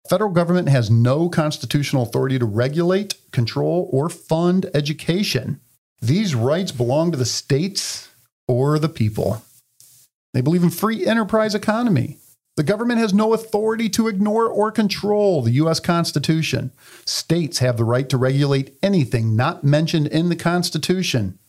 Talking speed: 140 wpm